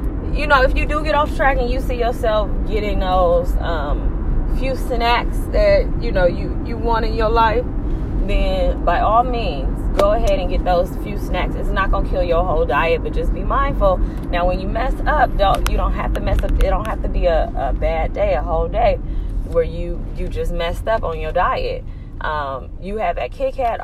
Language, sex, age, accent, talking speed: English, female, 20-39, American, 220 wpm